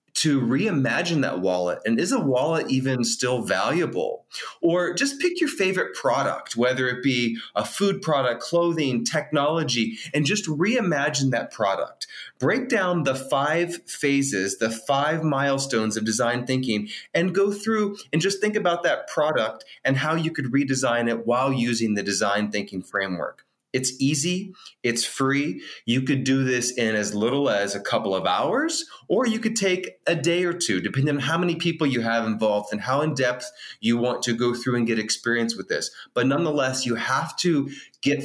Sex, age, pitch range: male, 30-49, 120-160 Hz